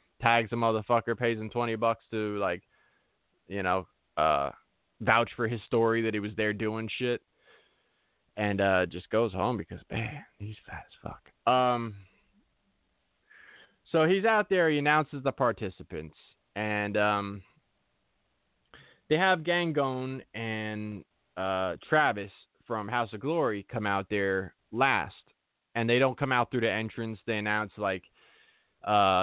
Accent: American